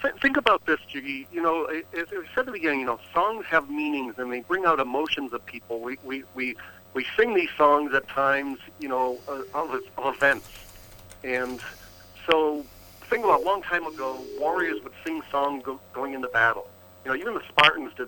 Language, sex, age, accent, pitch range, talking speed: English, male, 60-79, American, 120-145 Hz, 200 wpm